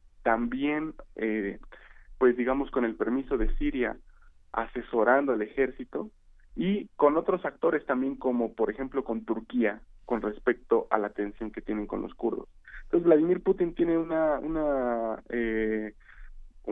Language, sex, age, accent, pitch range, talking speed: Spanish, male, 30-49, Mexican, 110-140 Hz, 140 wpm